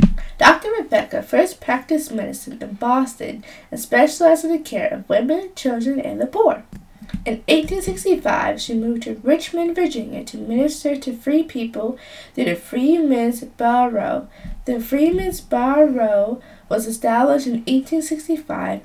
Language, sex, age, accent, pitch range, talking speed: English, female, 10-29, American, 235-310 Hz, 130 wpm